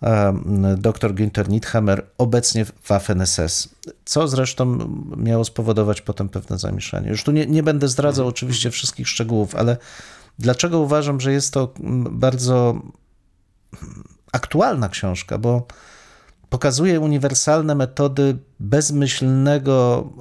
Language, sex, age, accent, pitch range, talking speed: Polish, male, 40-59, native, 110-135 Hz, 110 wpm